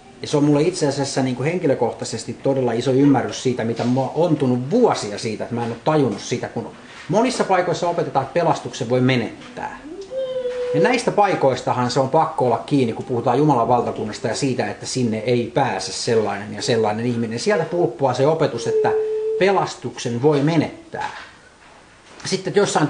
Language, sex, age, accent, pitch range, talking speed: Finnish, male, 30-49, native, 125-160 Hz, 170 wpm